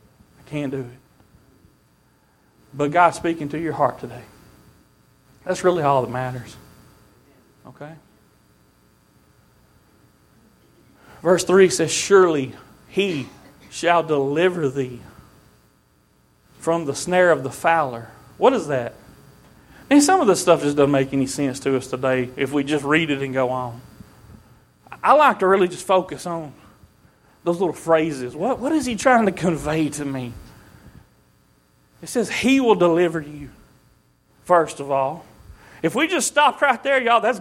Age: 40-59